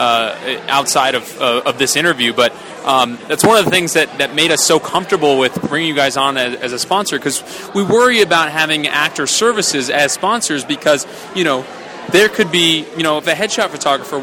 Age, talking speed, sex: 20-39, 210 wpm, male